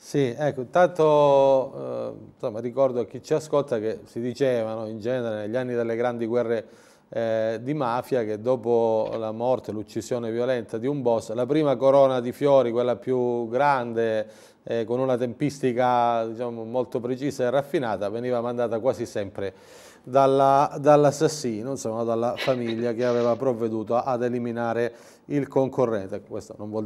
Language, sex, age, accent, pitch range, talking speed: Italian, male, 30-49, native, 120-155 Hz, 150 wpm